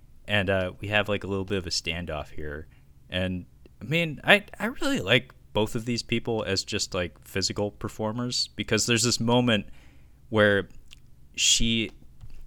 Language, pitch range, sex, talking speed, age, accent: English, 90-110 Hz, male, 165 wpm, 20-39, American